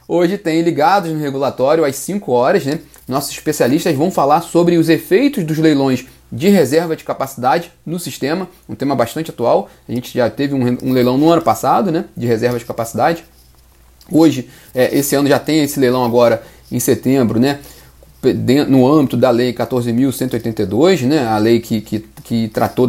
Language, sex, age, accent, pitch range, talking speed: Portuguese, male, 30-49, Brazilian, 120-160 Hz, 175 wpm